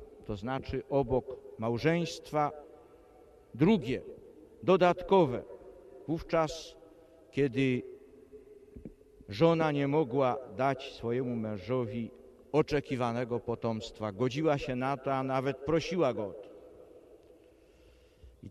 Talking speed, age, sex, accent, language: 90 wpm, 50-69, male, native, Polish